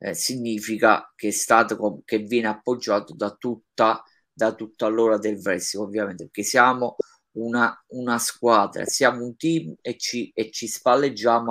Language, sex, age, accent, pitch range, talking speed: Italian, male, 30-49, native, 115-135 Hz, 150 wpm